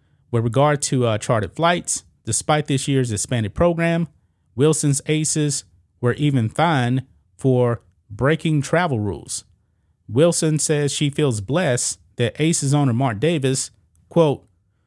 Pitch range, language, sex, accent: 105-145 Hz, English, male, American